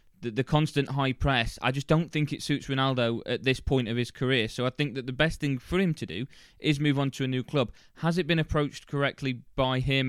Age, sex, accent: 20-39, male, British